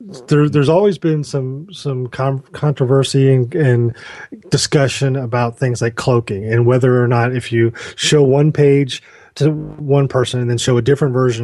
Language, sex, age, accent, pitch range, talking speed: English, male, 30-49, American, 115-140 Hz, 175 wpm